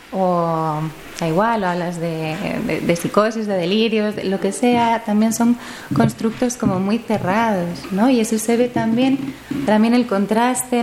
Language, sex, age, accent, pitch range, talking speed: Spanish, female, 30-49, Spanish, 190-235 Hz, 170 wpm